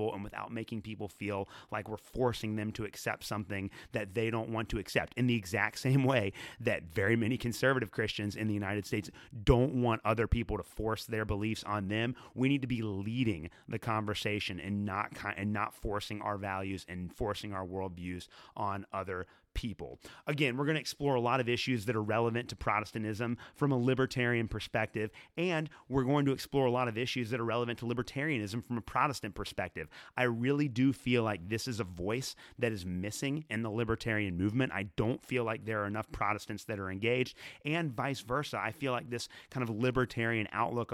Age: 30-49